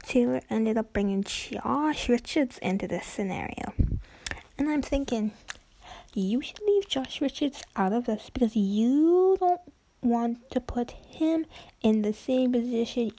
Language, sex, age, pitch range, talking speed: English, female, 10-29, 215-270 Hz, 140 wpm